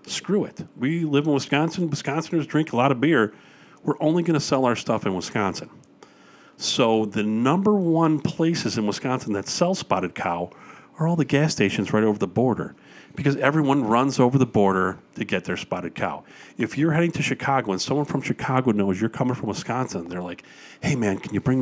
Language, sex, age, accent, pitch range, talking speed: English, male, 40-59, American, 105-150 Hz, 205 wpm